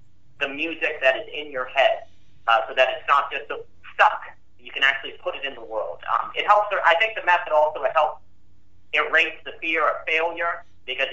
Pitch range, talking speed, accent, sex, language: 145-190 Hz, 200 wpm, American, male, English